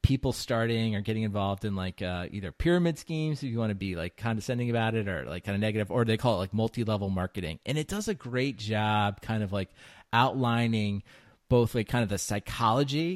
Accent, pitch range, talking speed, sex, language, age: American, 100-120 Hz, 220 wpm, male, English, 30-49